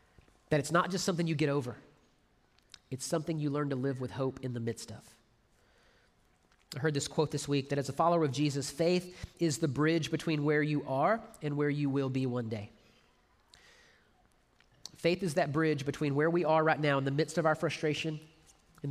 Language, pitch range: English, 125-155 Hz